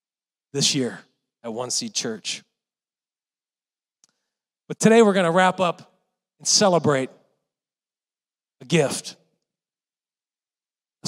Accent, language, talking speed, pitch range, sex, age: American, English, 95 wpm, 155-200 Hz, male, 40-59